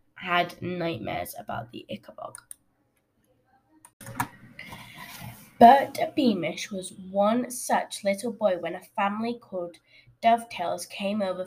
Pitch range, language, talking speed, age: 195-280 Hz, English, 100 wpm, 10-29